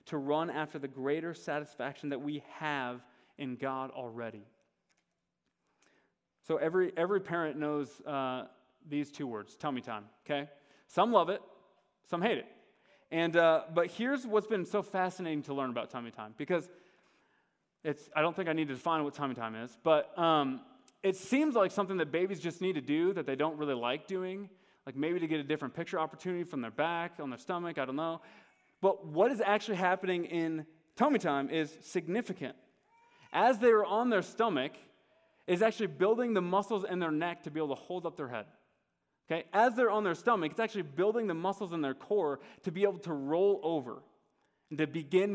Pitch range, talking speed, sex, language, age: 150-195 Hz, 190 wpm, male, English, 20-39